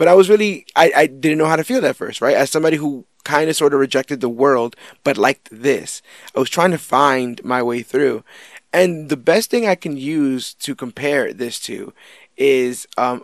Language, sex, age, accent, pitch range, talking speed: English, male, 20-39, American, 130-170 Hz, 220 wpm